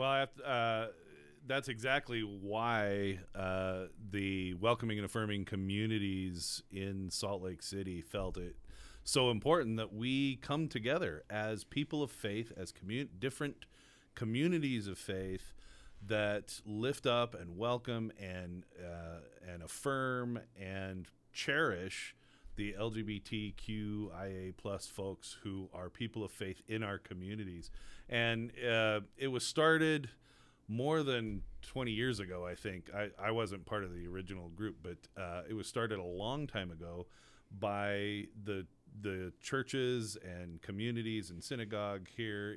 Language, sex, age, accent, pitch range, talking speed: English, male, 40-59, American, 95-115 Hz, 135 wpm